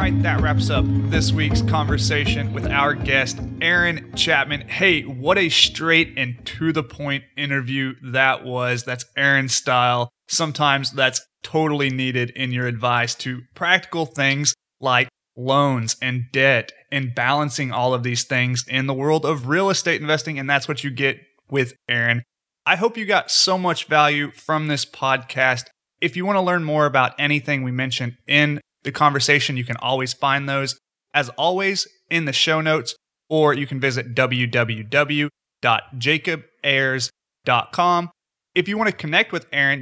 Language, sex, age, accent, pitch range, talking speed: English, male, 30-49, American, 125-155 Hz, 160 wpm